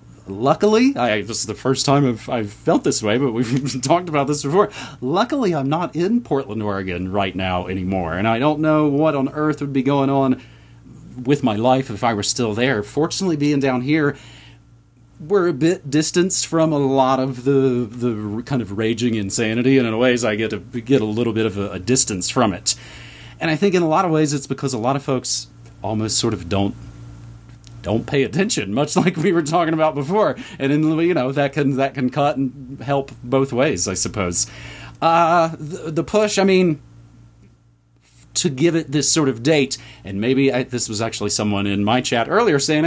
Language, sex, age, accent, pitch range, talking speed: English, male, 30-49, American, 115-155 Hz, 205 wpm